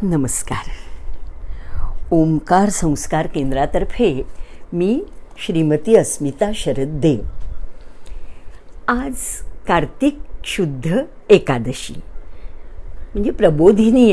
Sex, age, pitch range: female, 60-79, 150-245 Hz